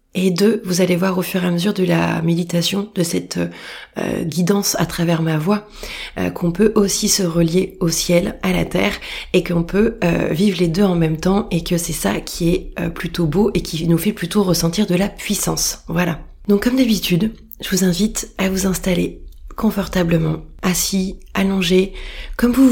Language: French